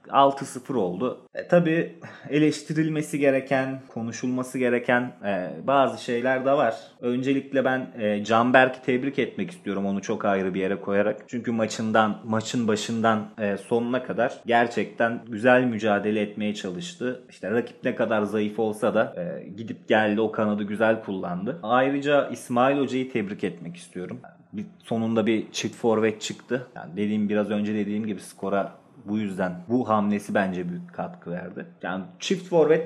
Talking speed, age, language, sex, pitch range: 150 wpm, 30-49, Turkish, male, 110-150 Hz